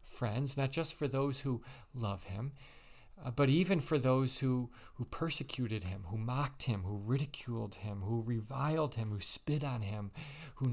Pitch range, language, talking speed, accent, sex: 110-135 Hz, English, 175 wpm, American, male